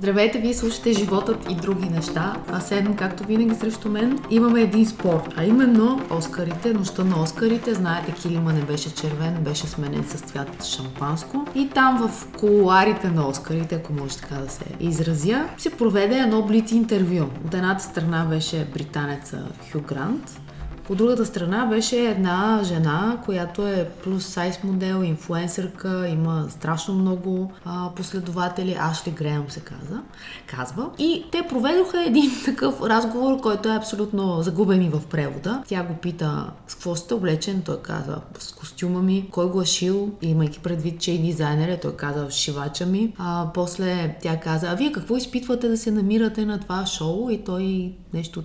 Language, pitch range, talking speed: Bulgarian, 165-220 Hz, 165 wpm